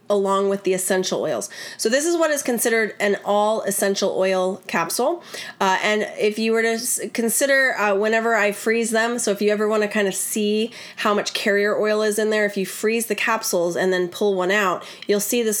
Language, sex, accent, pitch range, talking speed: English, female, American, 185-220 Hz, 215 wpm